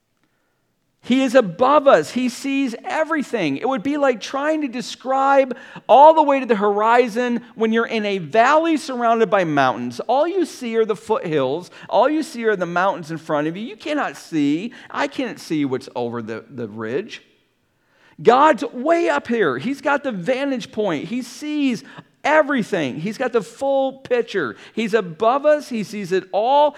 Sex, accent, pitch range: male, American, 185-270 Hz